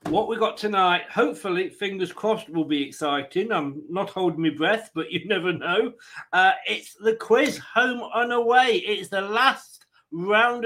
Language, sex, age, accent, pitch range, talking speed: English, male, 40-59, British, 165-215 Hz, 170 wpm